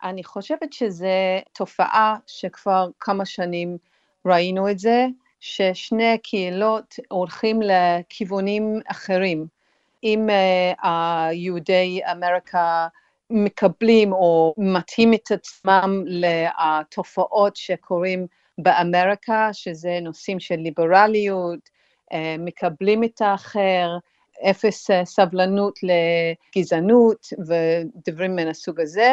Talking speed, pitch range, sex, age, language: 80 wpm, 175-205 Hz, female, 50-69, Hebrew